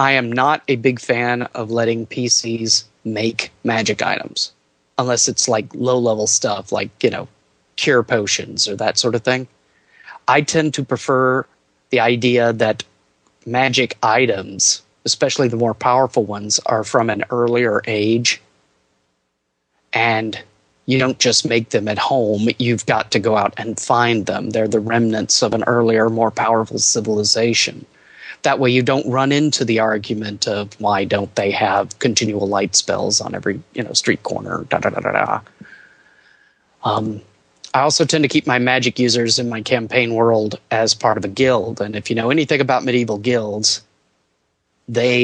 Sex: male